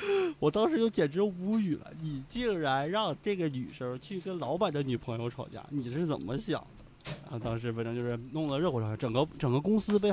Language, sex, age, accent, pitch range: Chinese, male, 20-39, native, 115-150 Hz